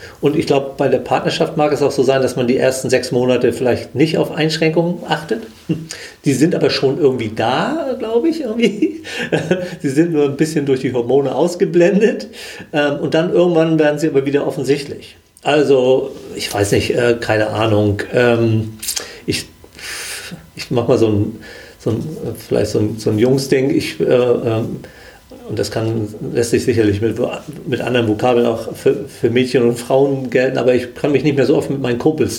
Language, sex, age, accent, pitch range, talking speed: German, male, 40-59, German, 115-160 Hz, 180 wpm